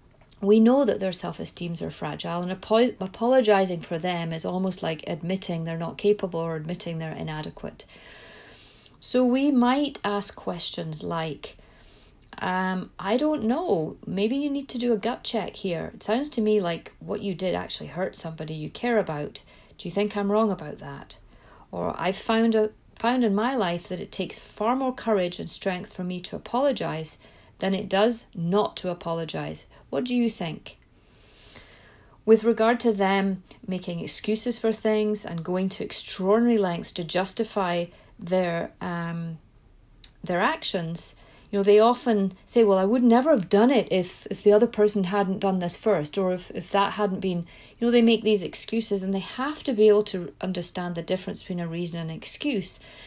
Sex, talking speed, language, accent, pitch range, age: female, 180 wpm, English, British, 175-225 Hz, 40-59